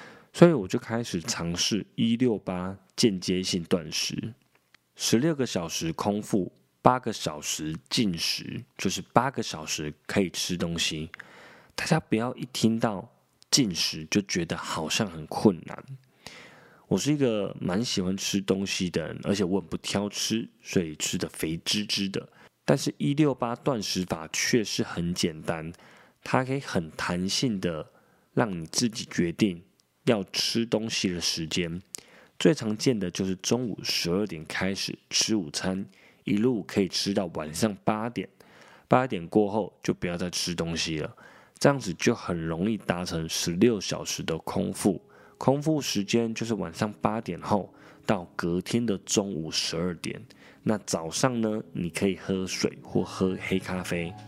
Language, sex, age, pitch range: Chinese, male, 20-39, 90-110 Hz